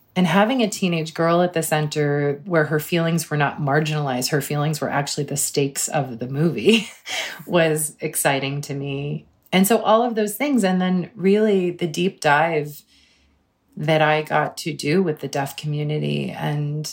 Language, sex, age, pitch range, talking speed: English, female, 30-49, 140-160 Hz, 175 wpm